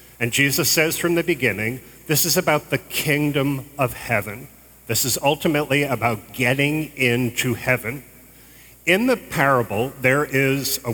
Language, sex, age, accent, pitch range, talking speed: English, male, 40-59, American, 125-155 Hz, 145 wpm